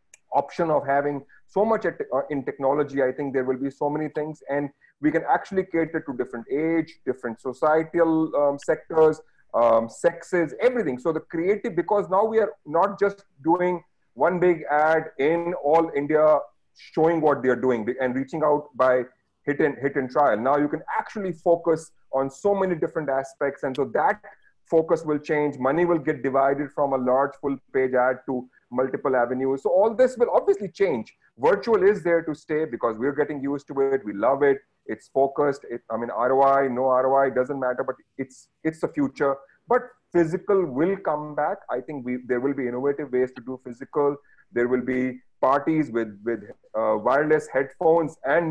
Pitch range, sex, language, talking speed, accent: 135-170 Hz, male, English, 185 wpm, Indian